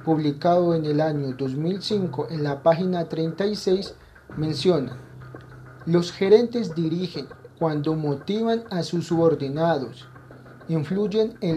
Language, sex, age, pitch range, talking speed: Persian, male, 40-59, 135-180 Hz, 105 wpm